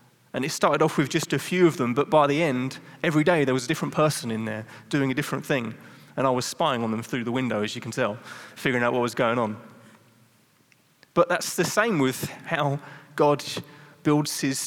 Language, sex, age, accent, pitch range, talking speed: English, male, 30-49, British, 130-160 Hz, 225 wpm